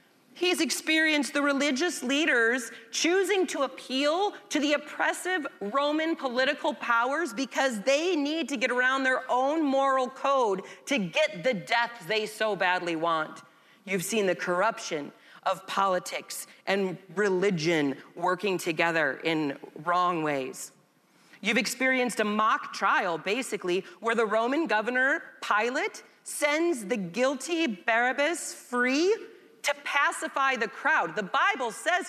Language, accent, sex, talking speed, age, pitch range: English, American, female, 125 wpm, 30-49, 200-310 Hz